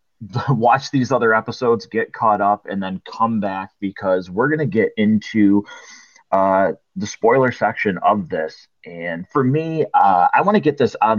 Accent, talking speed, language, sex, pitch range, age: American, 175 wpm, English, male, 100-145 Hz, 30-49